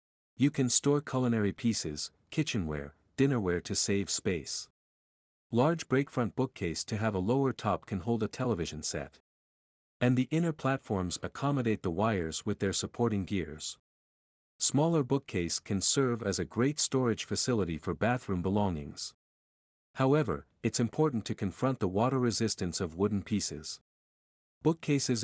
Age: 50-69